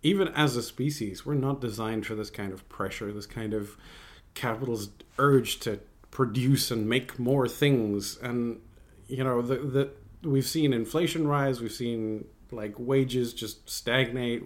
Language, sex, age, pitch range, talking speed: English, male, 30-49, 110-140 Hz, 160 wpm